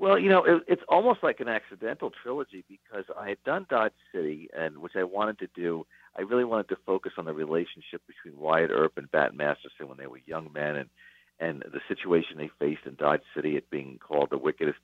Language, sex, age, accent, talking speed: English, male, 50-69, American, 220 wpm